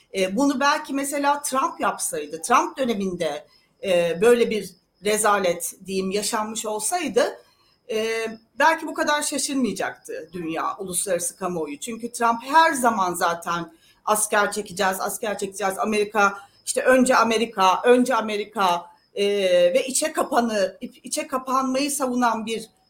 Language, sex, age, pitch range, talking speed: Turkish, female, 40-59, 200-265 Hz, 110 wpm